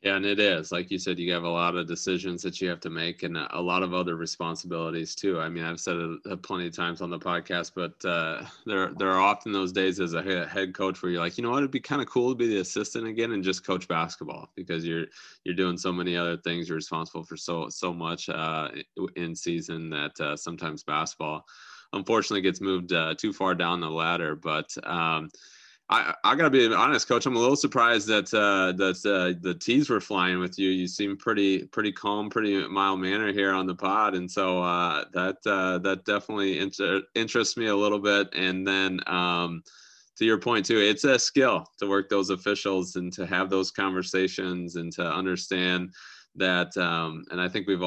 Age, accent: 20-39, American